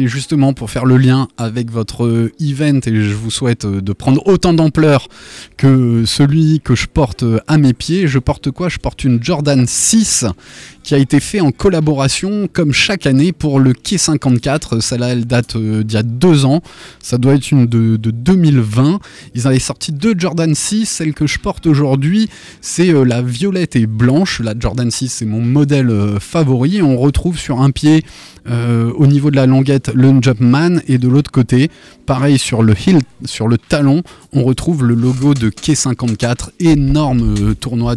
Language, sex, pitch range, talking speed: French, male, 110-140 Hz, 180 wpm